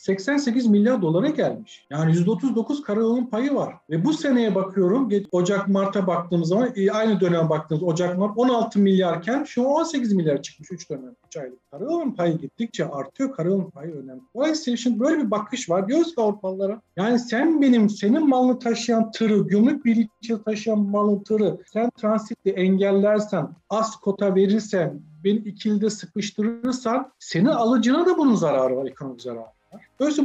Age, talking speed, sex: 50-69, 155 wpm, male